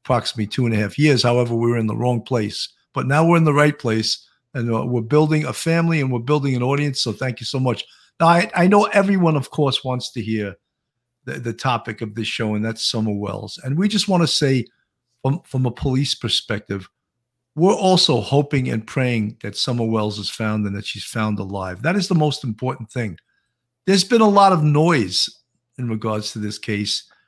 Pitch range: 115-165 Hz